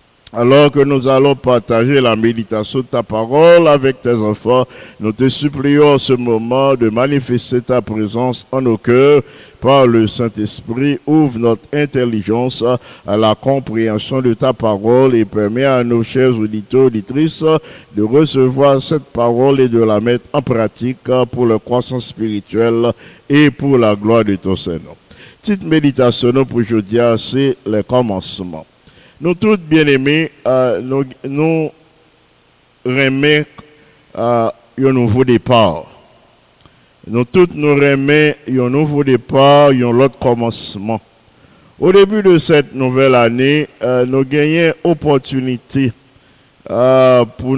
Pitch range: 115-145 Hz